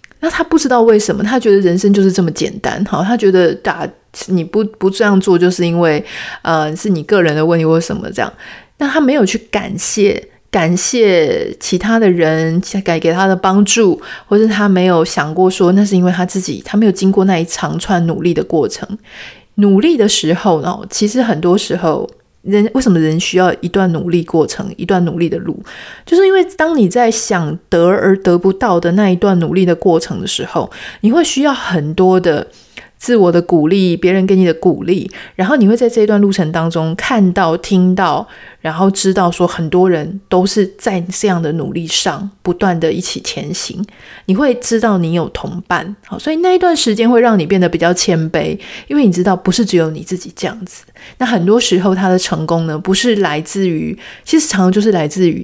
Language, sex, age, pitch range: Chinese, female, 30-49, 175-215 Hz